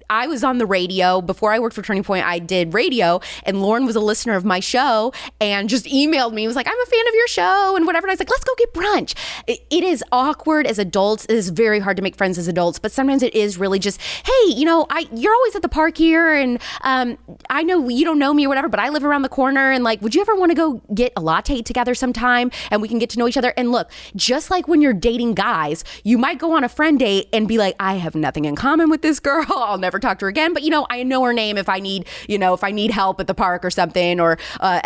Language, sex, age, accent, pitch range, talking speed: English, female, 20-39, American, 195-285 Hz, 285 wpm